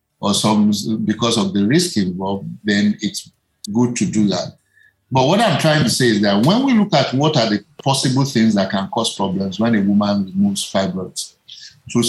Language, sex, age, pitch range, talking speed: English, male, 50-69, 105-140 Hz, 200 wpm